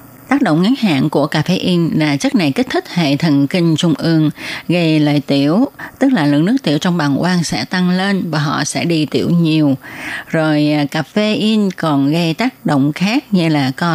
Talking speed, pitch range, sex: 215 wpm, 150-195 Hz, female